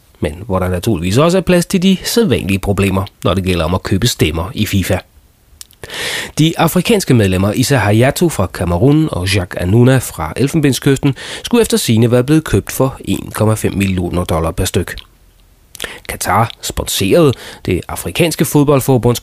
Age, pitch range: 30-49, 95-140 Hz